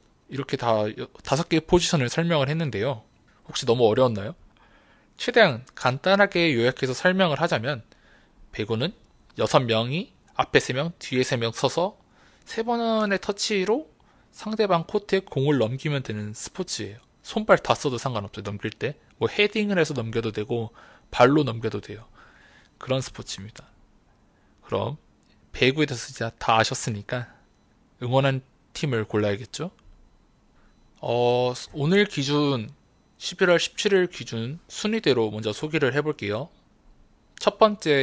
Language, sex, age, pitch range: Korean, male, 20-39, 110-170 Hz